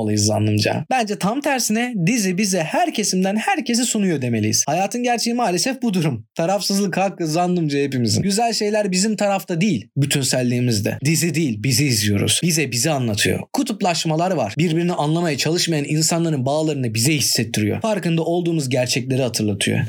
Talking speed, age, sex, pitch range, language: 140 wpm, 30-49, male, 140-230 Hz, Turkish